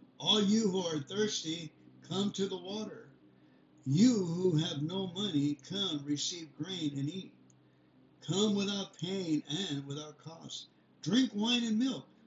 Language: English